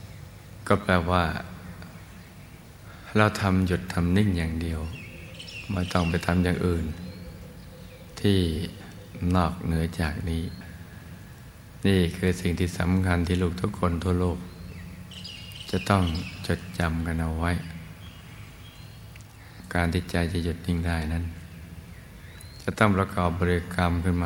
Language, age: Thai, 60-79